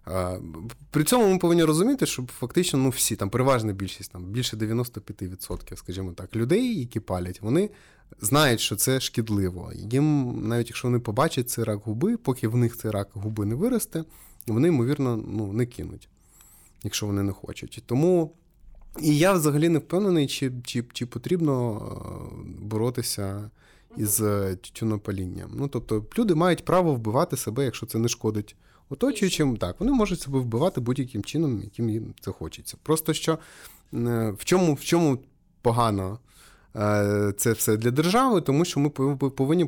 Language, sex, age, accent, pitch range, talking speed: Ukrainian, male, 20-39, native, 105-140 Hz, 155 wpm